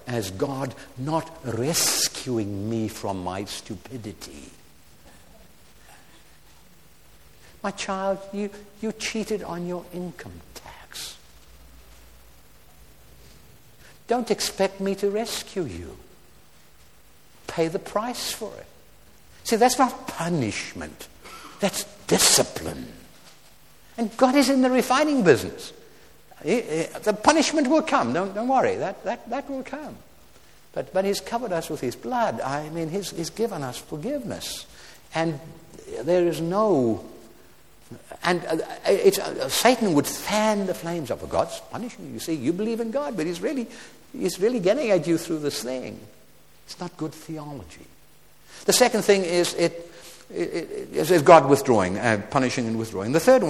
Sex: male